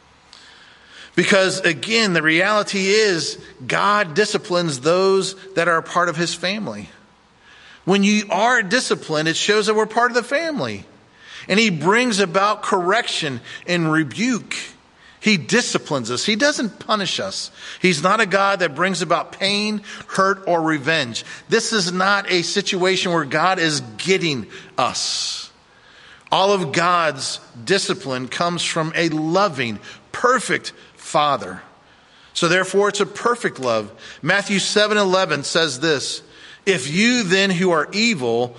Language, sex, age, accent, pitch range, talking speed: English, male, 40-59, American, 155-200 Hz, 135 wpm